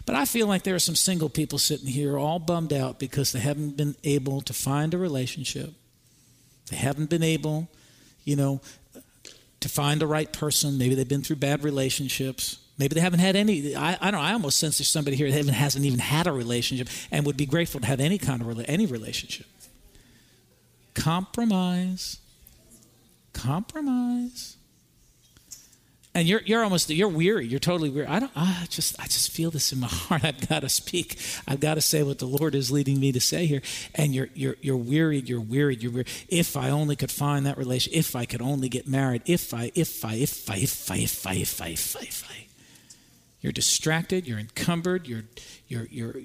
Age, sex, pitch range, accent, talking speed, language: 50-69, male, 130-160 Hz, American, 205 wpm, English